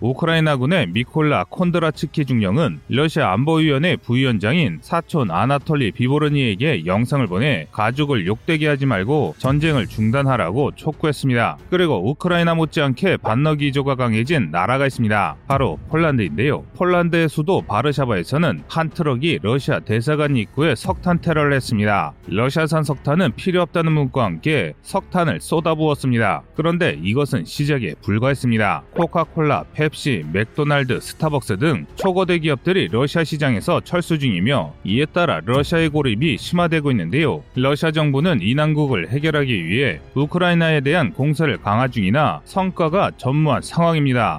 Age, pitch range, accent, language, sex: 30-49, 125-165 Hz, native, Korean, male